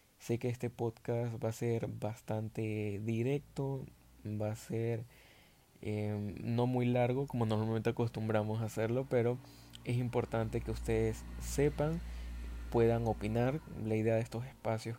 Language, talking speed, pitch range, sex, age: Spanish, 135 wpm, 110-125 Hz, male, 20-39